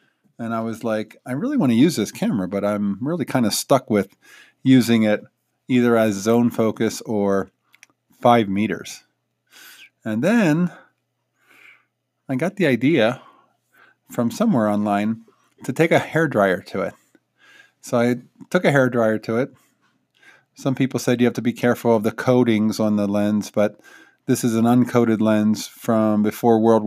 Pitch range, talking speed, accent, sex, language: 110-140 Hz, 160 wpm, American, male, English